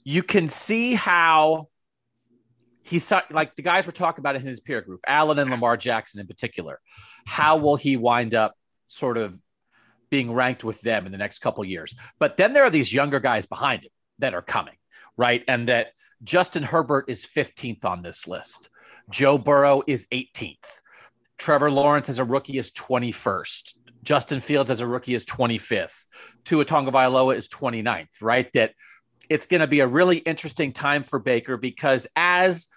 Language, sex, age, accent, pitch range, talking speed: English, male, 40-59, American, 125-155 Hz, 175 wpm